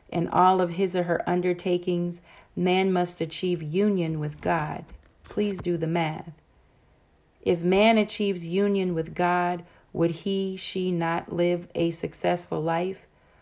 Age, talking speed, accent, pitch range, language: 40-59, 140 wpm, American, 165-185 Hz, English